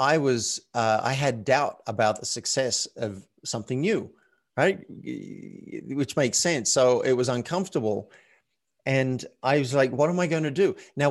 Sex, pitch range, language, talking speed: male, 110-135 Hz, English, 165 wpm